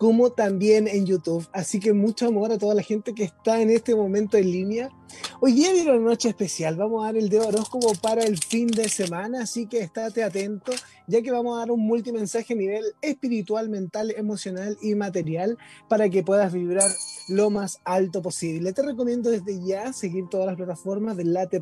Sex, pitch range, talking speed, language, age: male, 195-235 Hz, 200 wpm, Spanish, 20-39